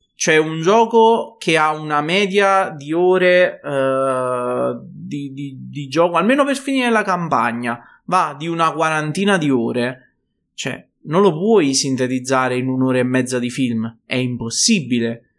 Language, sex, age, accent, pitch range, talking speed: Italian, male, 20-39, native, 135-180 Hz, 150 wpm